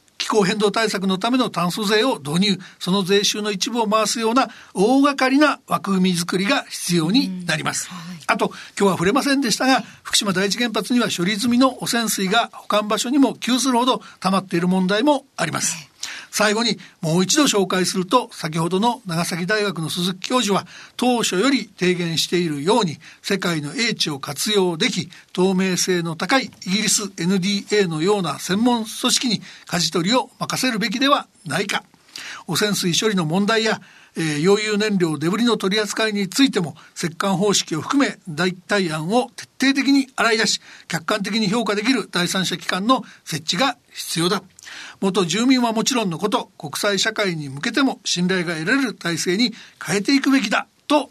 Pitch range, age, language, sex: 180-235 Hz, 60-79, Japanese, male